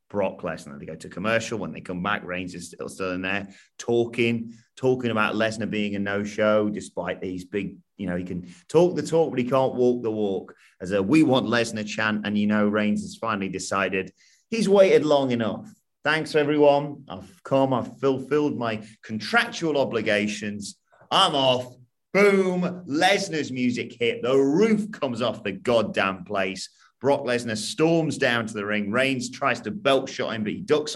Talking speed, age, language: 180 wpm, 30-49, English